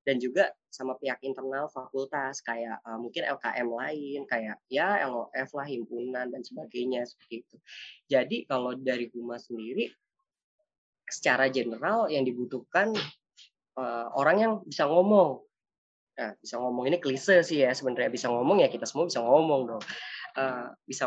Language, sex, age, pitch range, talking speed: Indonesian, female, 20-39, 130-200 Hz, 145 wpm